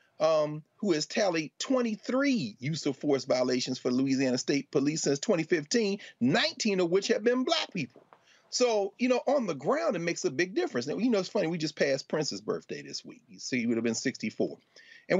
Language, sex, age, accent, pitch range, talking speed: English, male, 40-59, American, 135-230 Hz, 200 wpm